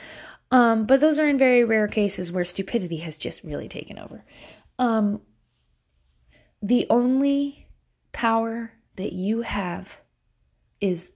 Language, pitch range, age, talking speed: English, 175-230 Hz, 20-39, 125 wpm